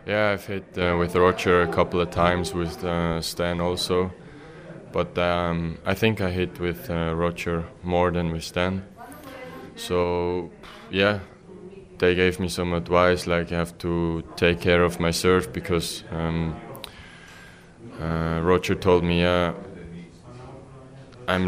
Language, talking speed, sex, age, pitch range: English, 140 wpm, male, 20-39, 85-95 Hz